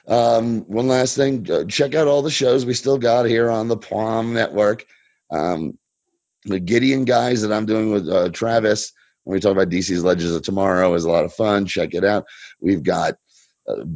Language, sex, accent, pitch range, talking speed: English, male, American, 90-125 Hz, 200 wpm